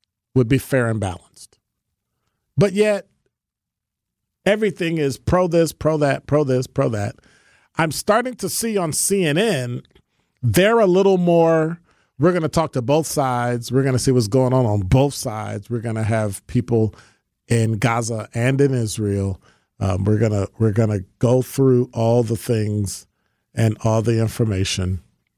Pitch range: 110-155 Hz